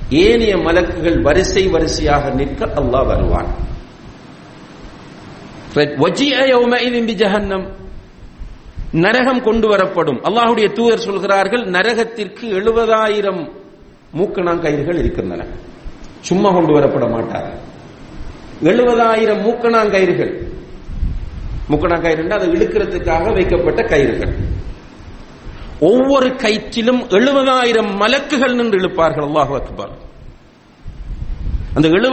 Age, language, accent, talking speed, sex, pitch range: 50-69, English, Indian, 75 wpm, male, 140-225 Hz